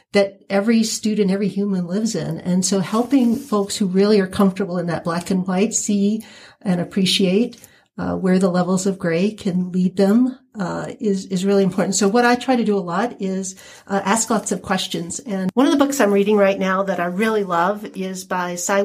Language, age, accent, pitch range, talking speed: English, 50-69, American, 195-235 Hz, 215 wpm